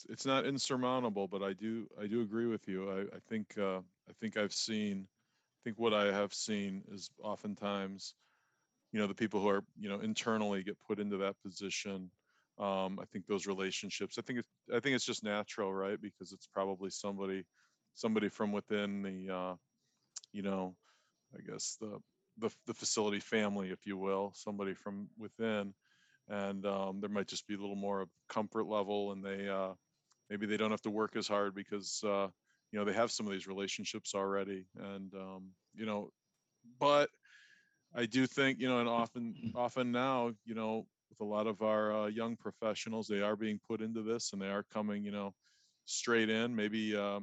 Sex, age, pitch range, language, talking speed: male, 40-59, 100-110 Hz, English, 195 wpm